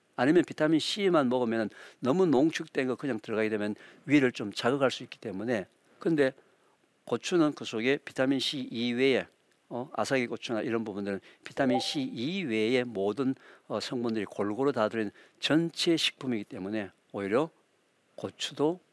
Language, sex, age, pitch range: Korean, male, 60-79, 115-160 Hz